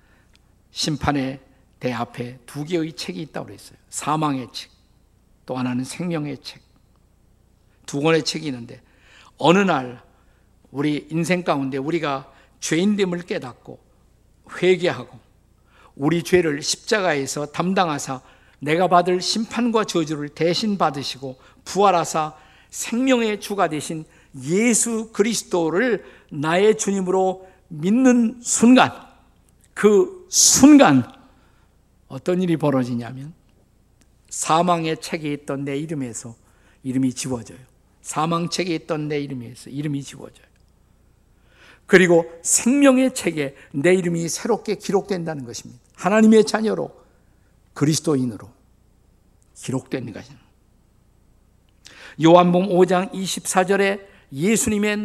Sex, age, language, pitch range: male, 50-69, Korean, 130-185 Hz